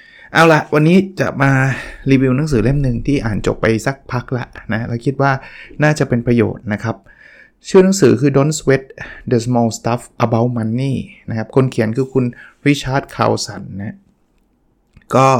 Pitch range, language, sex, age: 110-135 Hz, Thai, male, 20-39